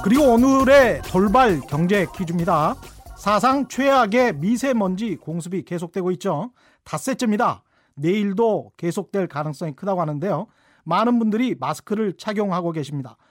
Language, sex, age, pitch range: Korean, male, 40-59, 175-240 Hz